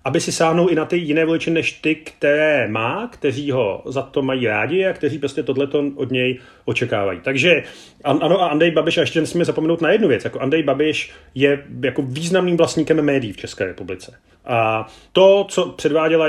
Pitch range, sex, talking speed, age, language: 120-145 Hz, male, 195 wpm, 40-59, Slovak